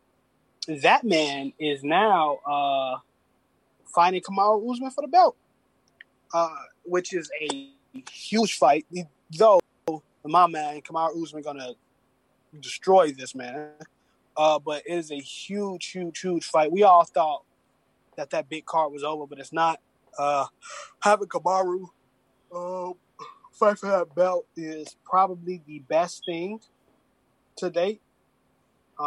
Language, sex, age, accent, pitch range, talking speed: English, male, 20-39, American, 145-175 Hz, 130 wpm